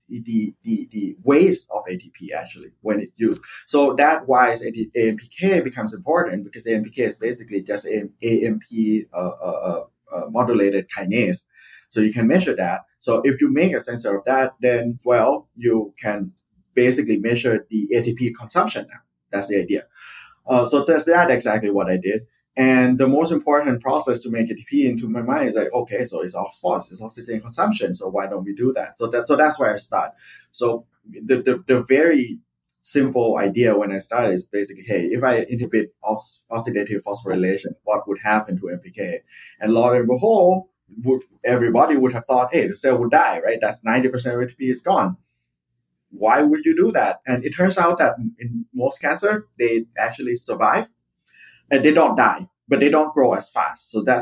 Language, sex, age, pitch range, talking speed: English, male, 20-39, 105-135 Hz, 185 wpm